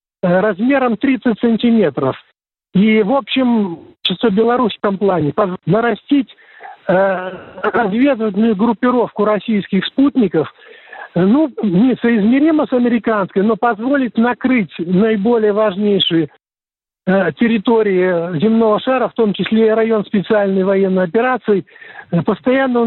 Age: 50-69